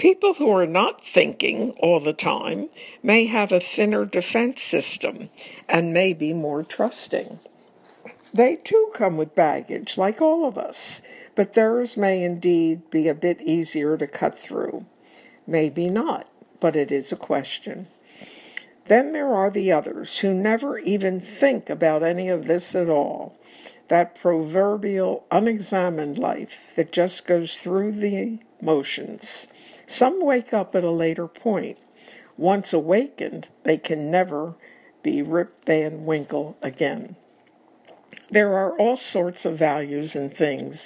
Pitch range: 155-195 Hz